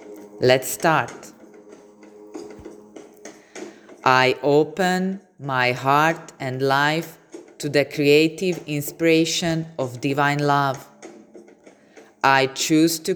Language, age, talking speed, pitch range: Slovak, 20-39, 80 wpm, 140-170 Hz